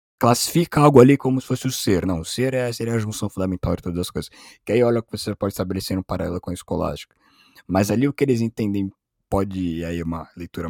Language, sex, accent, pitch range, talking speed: Portuguese, male, Brazilian, 90-125 Hz, 235 wpm